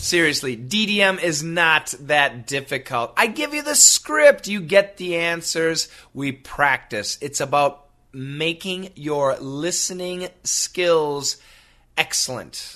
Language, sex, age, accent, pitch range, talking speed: English, male, 30-49, American, 120-185 Hz, 115 wpm